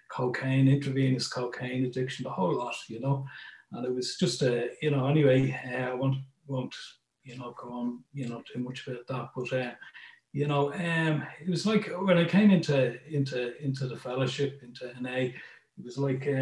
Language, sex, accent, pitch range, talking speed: English, male, Irish, 125-140 Hz, 185 wpm